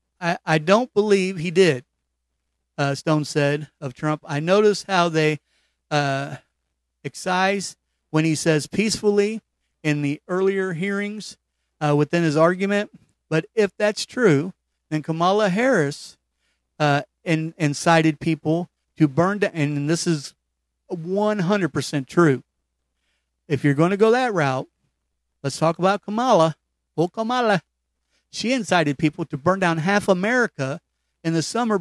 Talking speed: 130 wpm